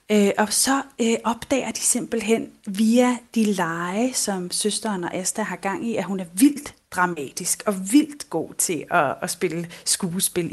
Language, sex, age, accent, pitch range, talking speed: Danish, female, 30-49, native, 180-220 Hz, 165 wpm